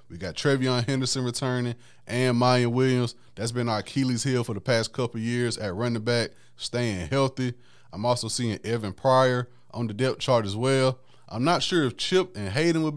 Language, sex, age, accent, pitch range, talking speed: English, male, 20-39, American, 110-130 Hz, 195 wpm